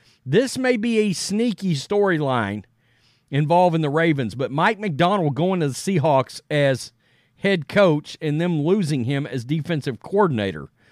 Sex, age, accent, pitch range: male, 50-69, American, 130-185 Hz